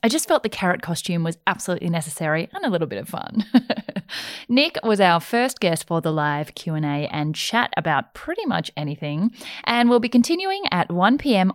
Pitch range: 160-240 Hz